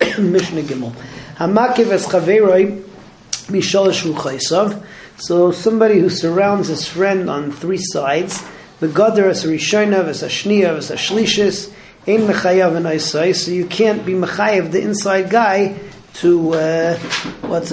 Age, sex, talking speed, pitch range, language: 40-59, male, 120 wpm, 160-195 Hz, English